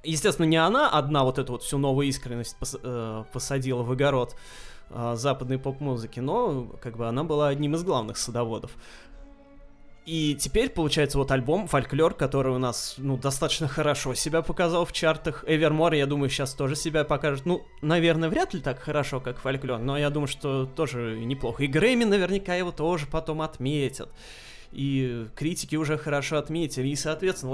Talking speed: 170 wpm